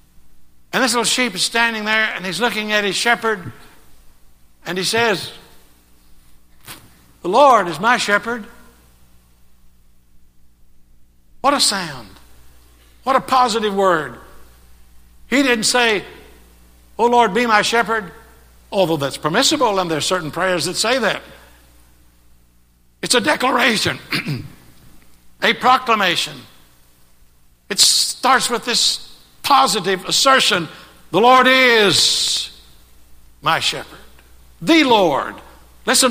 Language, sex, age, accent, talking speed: English, male, 60-79, American, 110 wpm